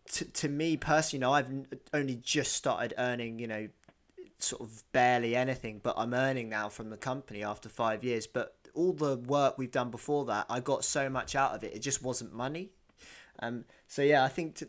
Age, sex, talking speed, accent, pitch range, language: 20-39, male, 215 wpm, British, 120-140 Hz, English